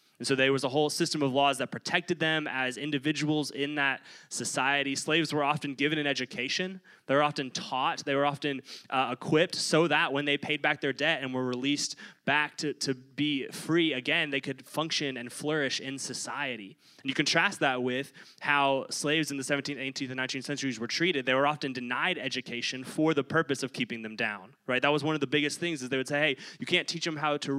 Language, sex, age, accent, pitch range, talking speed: English, male, 20-39, American, 130-155 Hz, 225 wpm